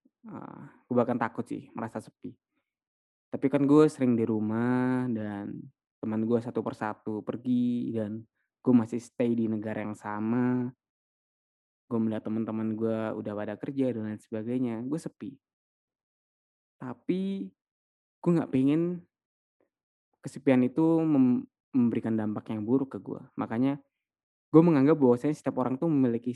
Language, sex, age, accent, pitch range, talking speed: Indonesian, male, 20-39, native, 115-140 Hz, 135 wpm